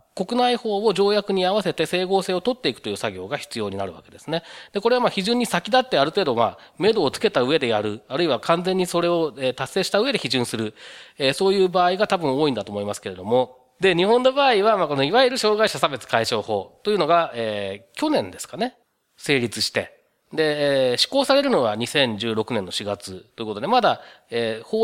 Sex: male